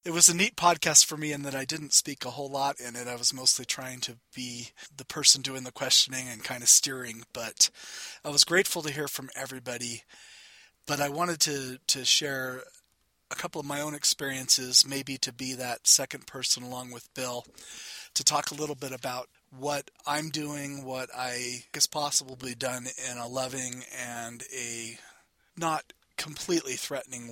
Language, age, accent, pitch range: English, 30-49, American, 120-140 Hz